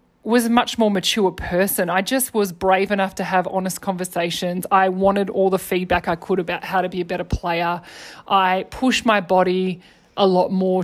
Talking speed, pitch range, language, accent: 200 wpm, 180-200 Hz, English, Australian